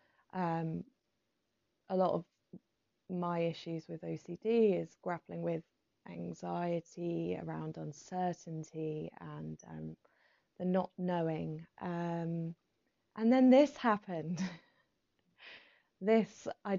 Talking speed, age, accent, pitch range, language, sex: 95 wpm, 20-39, British, 165-190 Hz, English, female